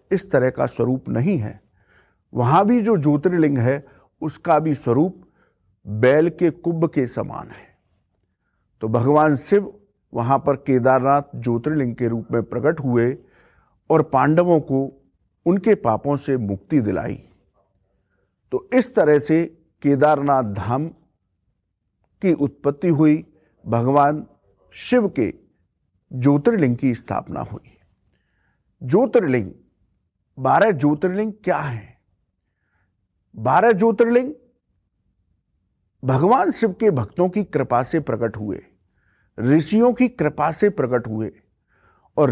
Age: 50-69